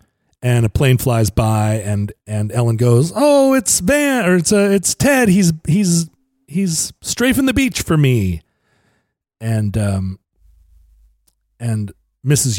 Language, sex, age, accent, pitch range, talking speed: English, male, 40-59, American, 105-150 Hz, 140 wpm